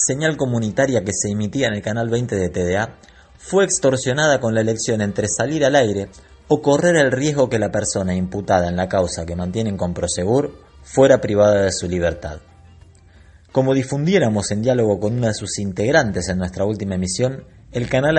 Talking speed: 180 wpm